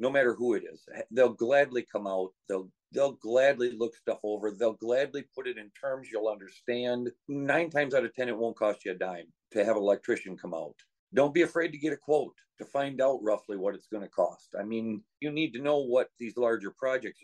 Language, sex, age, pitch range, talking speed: English, male, 50-69, 110-140 Hz, 225 wpm